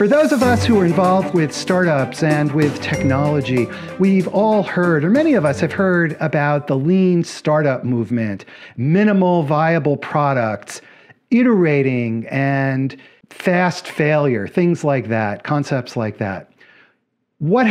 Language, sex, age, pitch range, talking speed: English, male, 50-69, 145-200 Hz, 135 wpm